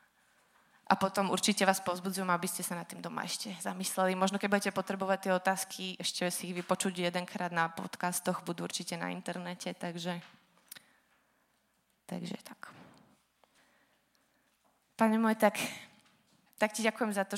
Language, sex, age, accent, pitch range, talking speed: Czech, female, 20-39, native, 180-200 Hz, 140 wpm